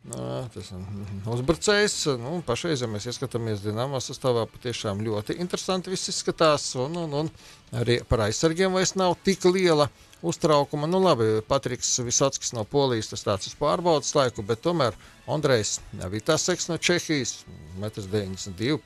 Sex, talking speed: male, 145 wpm